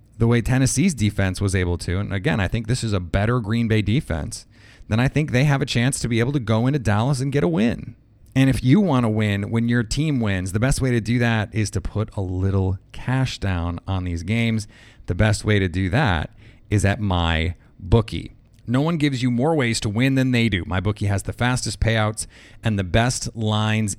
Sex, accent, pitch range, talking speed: male, American, 105-125 Hz, 230 wpm